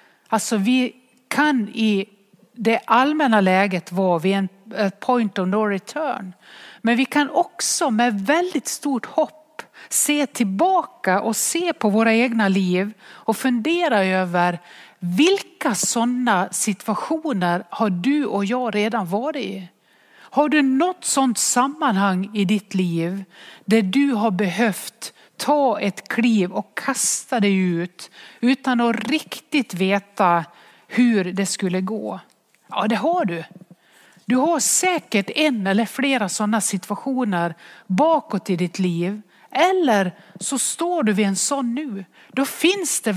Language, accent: English, Swedish